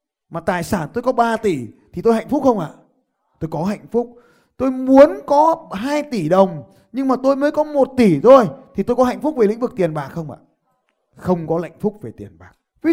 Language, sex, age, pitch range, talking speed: Vietnamese, male, 20-39, 185-265 Hz, 245 wpm